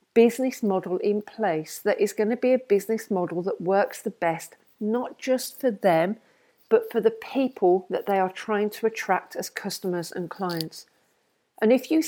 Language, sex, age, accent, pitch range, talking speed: English, female, 40-59, British, 190-250 Hz, 185 wpm